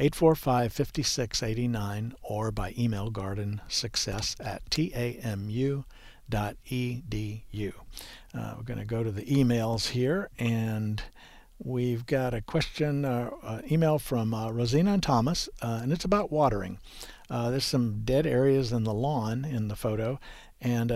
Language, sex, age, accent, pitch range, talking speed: English, male, 60-79, American, 110-135 Hz, 130 wpm